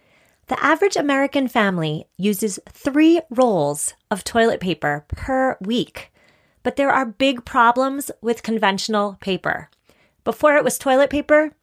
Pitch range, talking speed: 215-280 Hz, 130 wpm